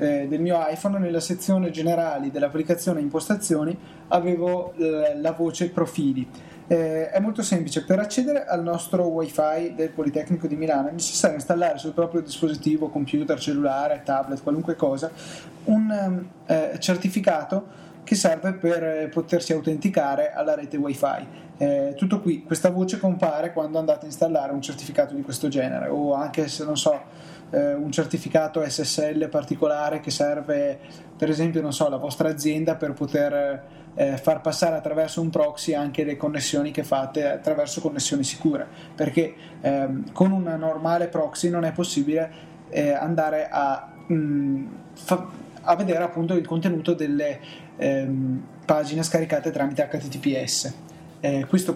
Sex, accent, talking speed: male, native, 145 wpm